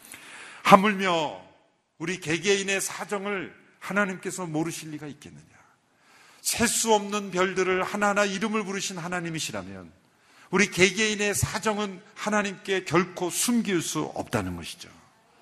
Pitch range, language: 125-175 Hz, Korean